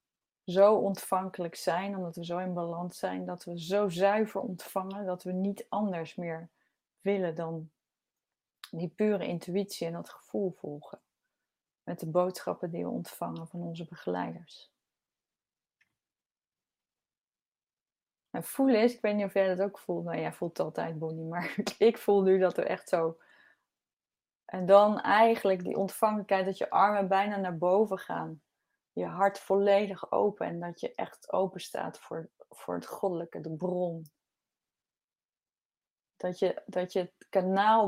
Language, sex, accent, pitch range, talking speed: Dutch, female, Dutch, 170-200 Hz, 150 wpm